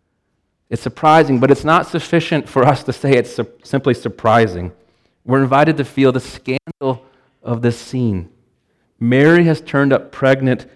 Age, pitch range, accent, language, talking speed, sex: 30-49, 110-135 Hz, American, English, 150 wpm, male